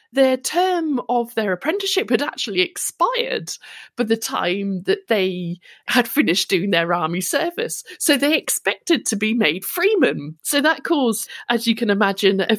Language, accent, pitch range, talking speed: English, British, 195-310 Hz, 160 wpm